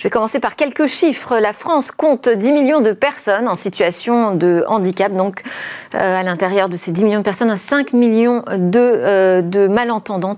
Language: French